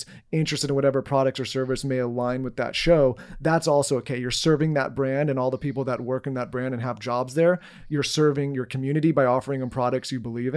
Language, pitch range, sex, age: English, 130-150 Hz, male, 30-49